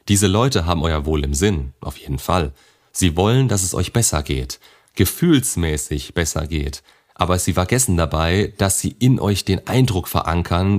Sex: male